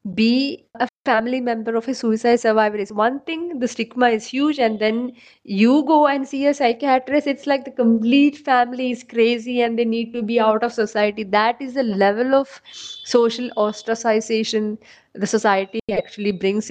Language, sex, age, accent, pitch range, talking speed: English, female, 20-39, Indian, 220-270 Hz, 175 wpm